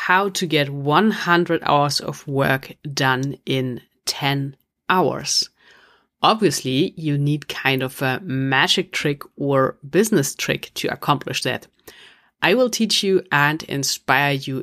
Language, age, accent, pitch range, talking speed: English, 30-49, German, 140-175 Hz, 130 wpm